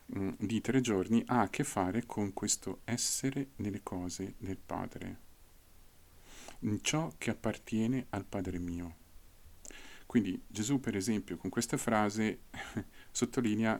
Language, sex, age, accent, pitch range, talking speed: Italian, male, 40-59, native, 90-115 Hz, 125 wpm